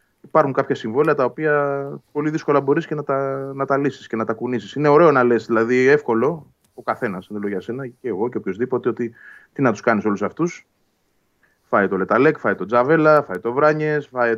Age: 30-49